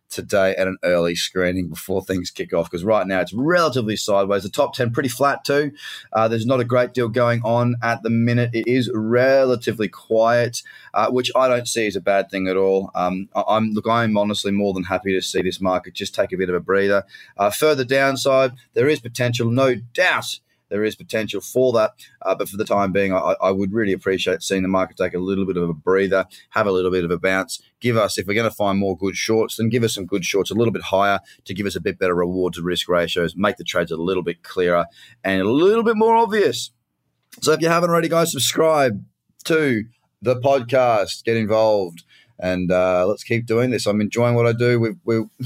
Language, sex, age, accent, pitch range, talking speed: English, male, 20-39, Australian, 100-125 Hz, 230 wpm